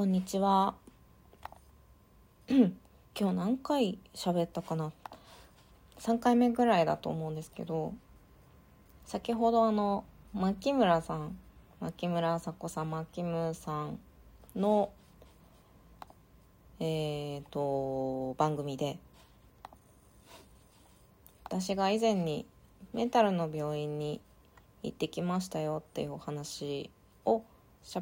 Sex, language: female, Japanese